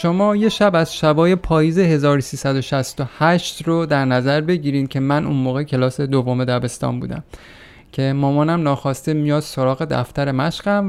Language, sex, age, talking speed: Persian, male, 30-49, 145 wpm